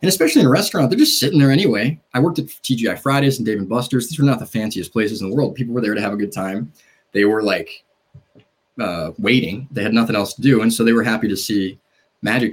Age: 20-39